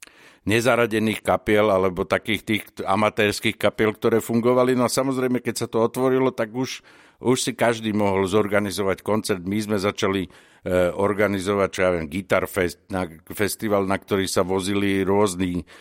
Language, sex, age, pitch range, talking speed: Slovak, male, 60-79, 95-110 Hz, 145 wpm